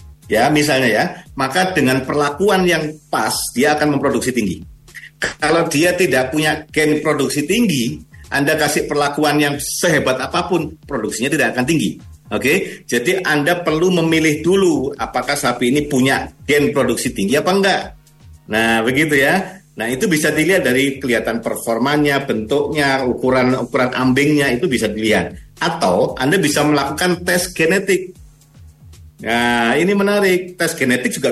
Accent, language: native, Indonesian